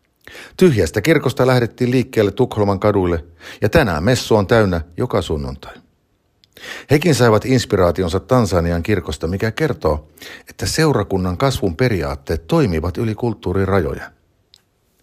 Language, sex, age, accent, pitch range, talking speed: Finnish, male, 50-69, native, 85-125 Hz, 110 wpm